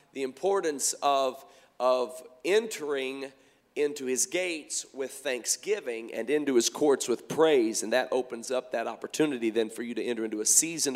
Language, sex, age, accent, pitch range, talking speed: English, male, 40-59, American, 130-170 Hz, 165 wpm